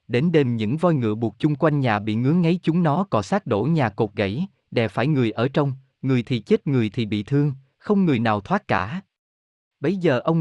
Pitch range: 115-160 Hz